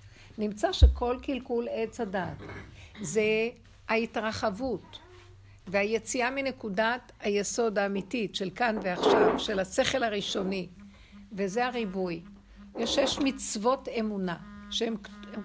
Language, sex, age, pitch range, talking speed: Hebrew, female, 60-79, 185-230 Hz, 95 wpm